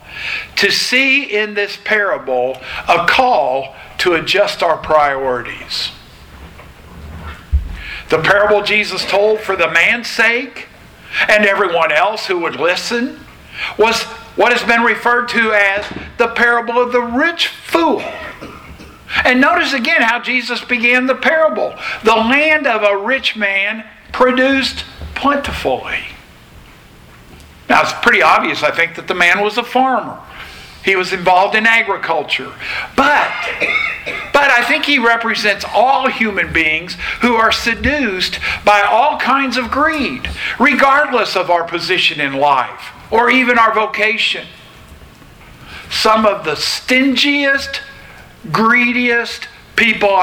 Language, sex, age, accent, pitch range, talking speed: English, male, 50-69, American, 185-245 Hz, 125 wpm